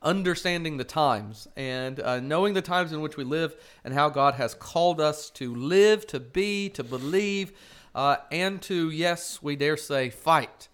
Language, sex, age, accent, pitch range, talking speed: English, male, 40-59, American, 125-160 Hz, 180 wpm